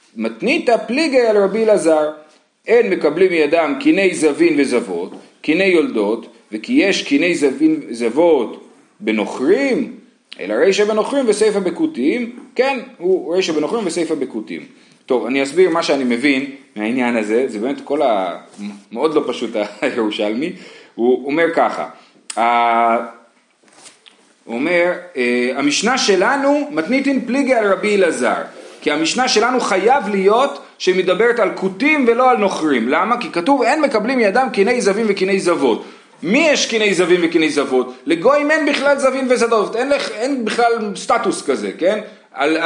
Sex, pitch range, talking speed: male, 155-250 Hz, 130 wpm